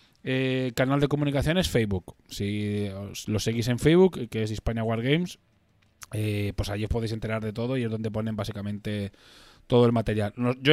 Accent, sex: Spanish, male